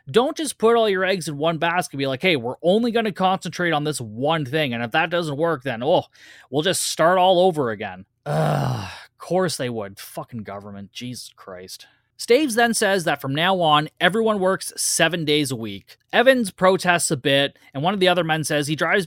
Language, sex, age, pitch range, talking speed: English, male, 20-39, 135-185 Hz, 215 wpm